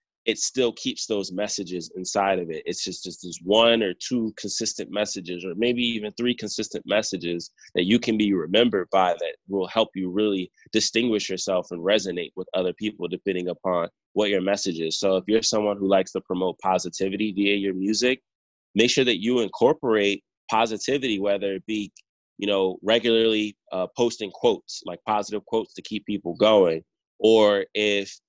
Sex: male